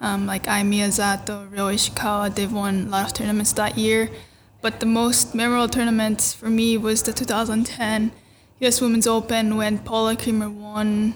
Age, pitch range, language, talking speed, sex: 10-29, 215-240 Hz, English, 165 wpm, female